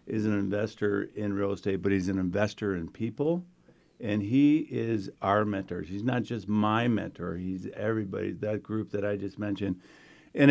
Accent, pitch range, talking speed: American, 95-115 Hz, 175 wpm